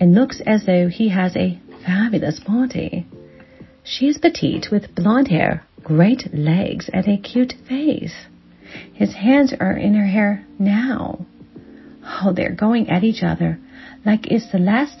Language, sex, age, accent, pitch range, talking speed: English, female, 40-59, American, 170-240 Hz, 150 wpm